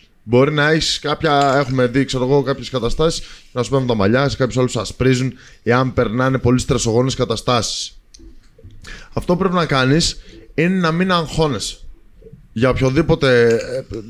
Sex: male